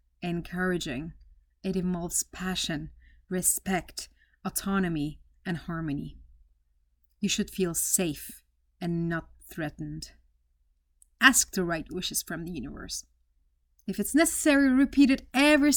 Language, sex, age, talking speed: English, female, 30-49, 105 wpm